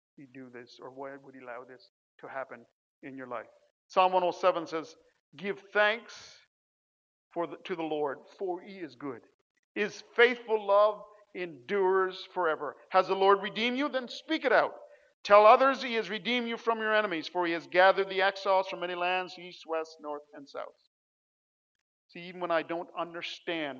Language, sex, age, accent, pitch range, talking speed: English, male, 50-69, American, 165-215 Hz, 180 wpm